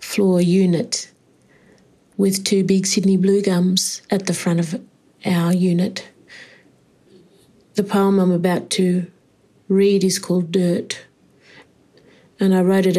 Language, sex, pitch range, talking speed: English, female, 180-205 Hz, 120 wpm